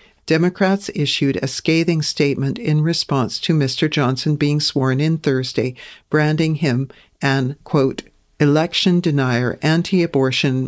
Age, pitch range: 50-69, 135-170 Hz